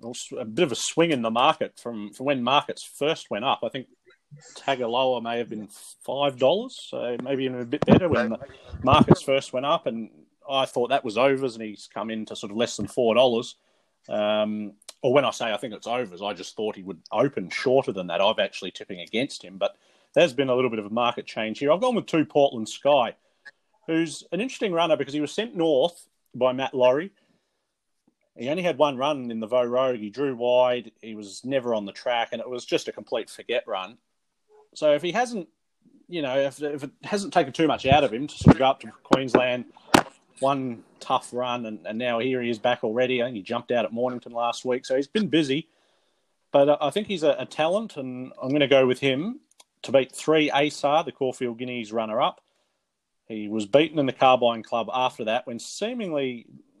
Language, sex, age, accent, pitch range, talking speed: English, male, 30-49, Australian, 120-155 Hz, 220 wpm